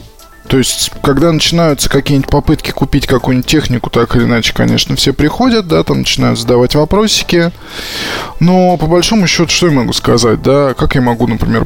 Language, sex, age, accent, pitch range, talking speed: Russian, male, 20-39, native, 115-145 Hz, 170 wpm